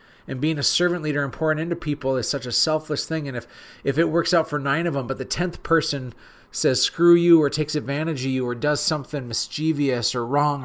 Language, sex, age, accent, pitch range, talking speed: English, male, 30-49, American, 125-150 Hz, 235 wpm